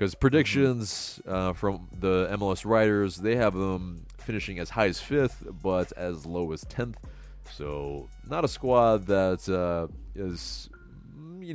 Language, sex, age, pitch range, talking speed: English, male, 30-49, 85-120 Hz, 145 wpm